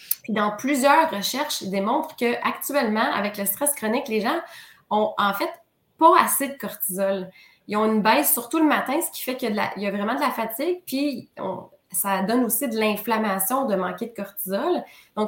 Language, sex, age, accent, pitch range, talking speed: French, female, 20-39, Canadian, 205-260 Hz, 210 wpm